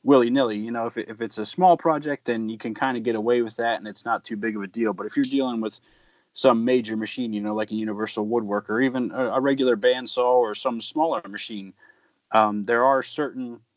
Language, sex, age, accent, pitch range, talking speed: English, male, 30-49, American, 110-130 Hz, 240 wpm